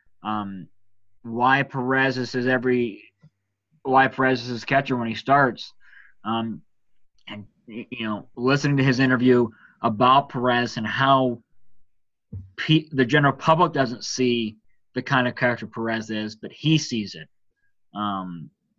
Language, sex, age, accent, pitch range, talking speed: English, male, 20-39, American, 110-140 Hz, 135 wpm